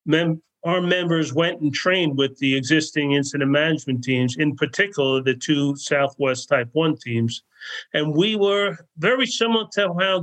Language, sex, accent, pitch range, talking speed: English, male, American, 135-175 Hz, 155 wpm